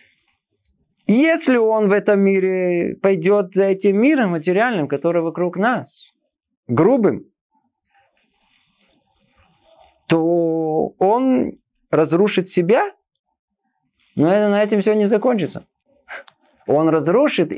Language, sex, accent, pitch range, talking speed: Russian, male, native, 165-240 Hz, 90 wpm